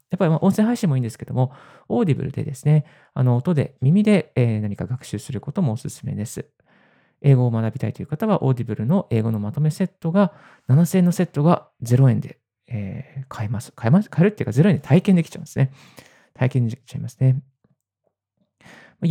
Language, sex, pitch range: Japanese, male, 125-160 Hz